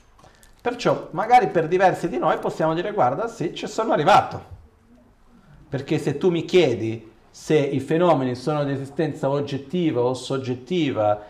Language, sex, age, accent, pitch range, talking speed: Italian, male, 40-59, native, 120-175 Hz, 145 wpm